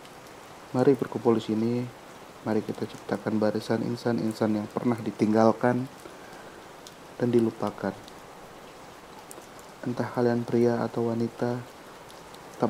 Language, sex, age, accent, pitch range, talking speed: Indonesian, male, 30-49, native, 110-120 Hz, 90 wpm